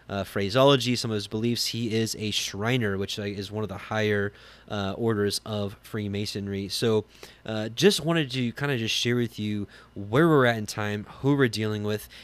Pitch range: 100-120 Hz